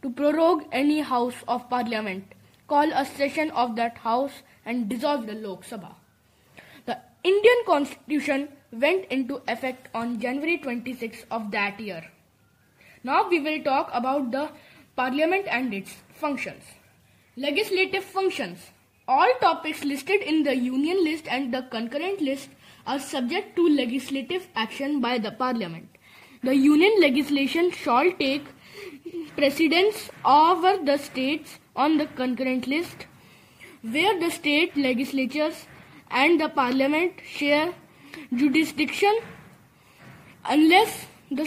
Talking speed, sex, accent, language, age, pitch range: 120 wpm, female, Indian, English, 20-39, 255-315 Hz